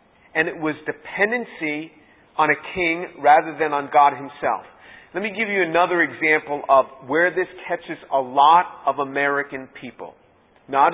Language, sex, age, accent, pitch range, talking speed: English, male, 50-69, American, 150-185 Hz, 155 wpm